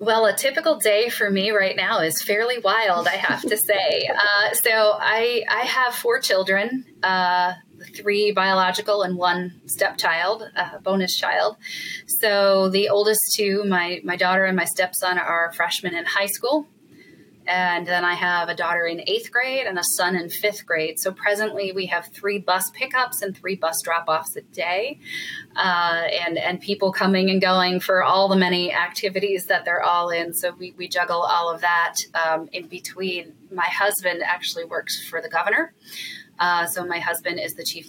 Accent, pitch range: American, 170-205 Hz